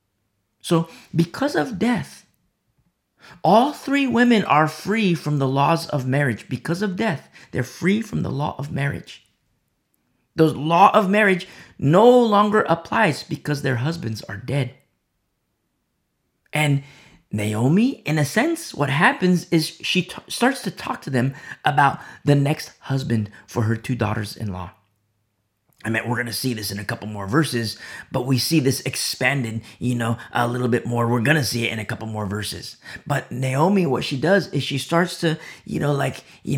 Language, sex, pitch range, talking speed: English, male, 115-165 Hz, 170 wpm